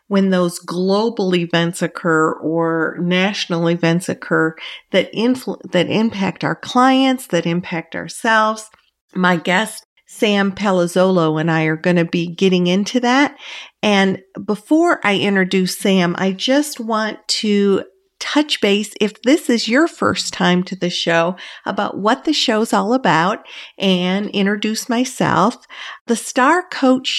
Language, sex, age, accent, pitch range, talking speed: English, female, 50-69, American, 180-235 Hz, 140 wpm